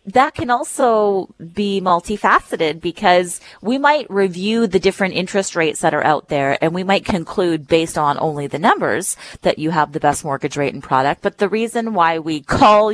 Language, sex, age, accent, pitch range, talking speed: English, female, 30-49, American, 155-210 Hz, 190 wpm